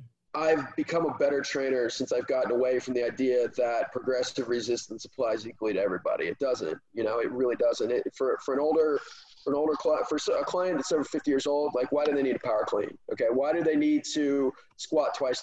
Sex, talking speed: male, 230 wpm